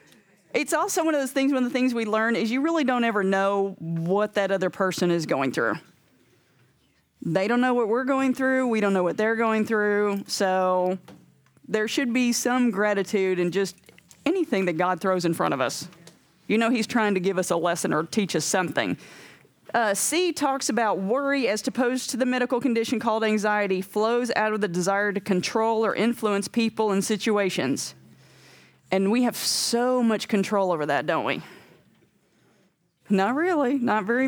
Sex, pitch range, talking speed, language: female, 195-255 Hz, 185 wpm, English